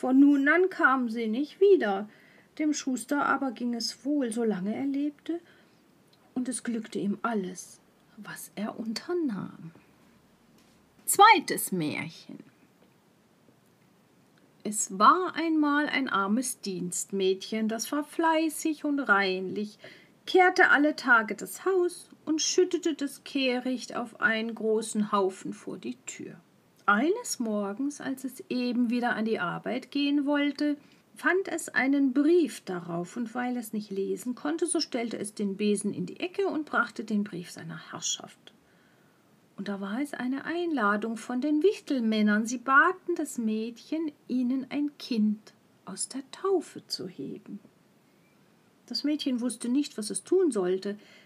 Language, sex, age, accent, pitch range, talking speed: German, female, 50-69, German, 210-300 Hz, 140 wpm